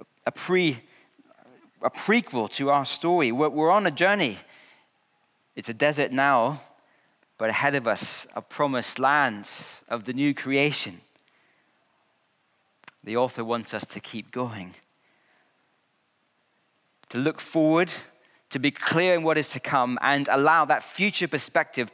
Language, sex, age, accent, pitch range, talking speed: English, male, 40-59, British, 125-165 Hz, 135 wpm